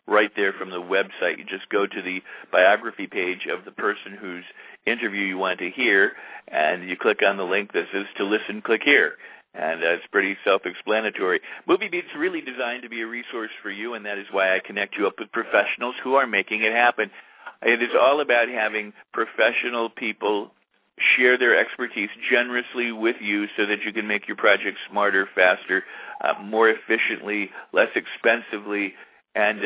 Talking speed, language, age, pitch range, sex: 185 wpm, English, 50-69, 105-120 Hz, male